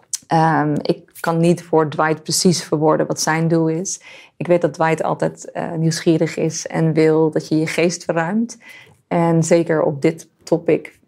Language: Dutch